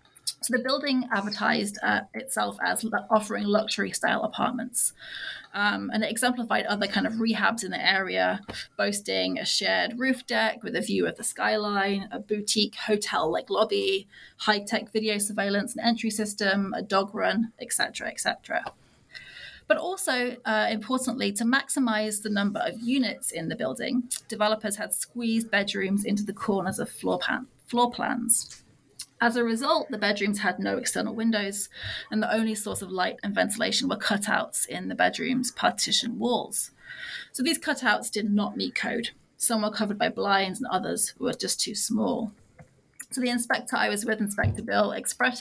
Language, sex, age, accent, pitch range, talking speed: English, female, 20-39, British, 205-245 Hz, 165 wpm